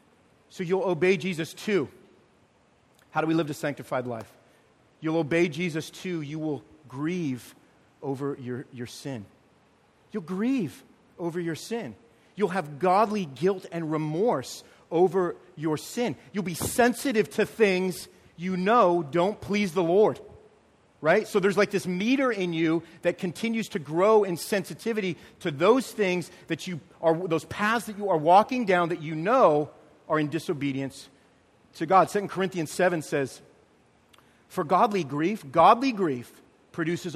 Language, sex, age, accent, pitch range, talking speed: English, male, 40-59, American, 150-195 Hz, 150 wpm